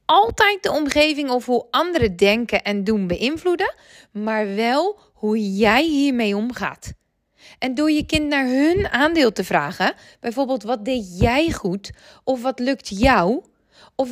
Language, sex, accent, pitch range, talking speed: Dutch, female, Dutch, 215-310 Hz, 150 wpm